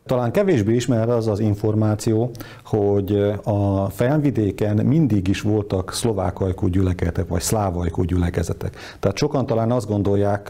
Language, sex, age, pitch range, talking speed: Hungarian, male, 50-69, 100-115 Hz, 130 wpm